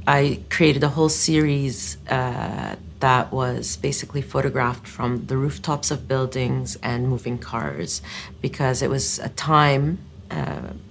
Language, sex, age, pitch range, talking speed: English, female, 40-59, 125-150 Hz, 130 wpm